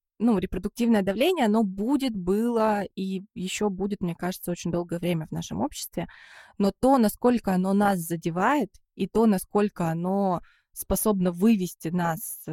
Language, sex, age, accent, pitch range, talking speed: Russian, female, 20-39, native, 170-205 Hz, 145 wpm